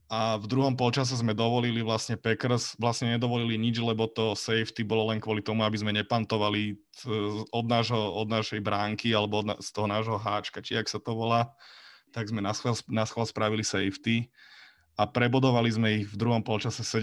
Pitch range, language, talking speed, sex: 110-120 Hz, Slovak, 175 wpm, male